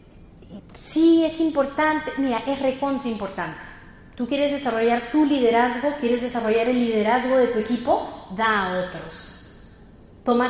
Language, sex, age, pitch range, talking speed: Spanish, female, 30-49, 220-290 Hz, 130 wpm